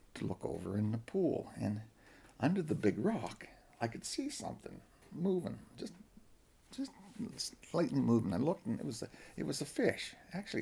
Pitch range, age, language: 95-145 Hz, 60-79, English